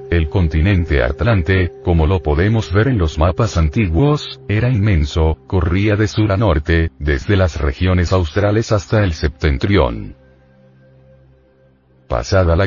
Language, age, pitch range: Spanish, 40-59, 80-115 Hz